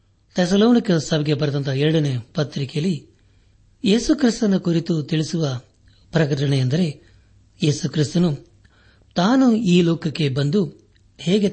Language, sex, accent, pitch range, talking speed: Kannada, male, native, 110-165 Hz, 80 wpm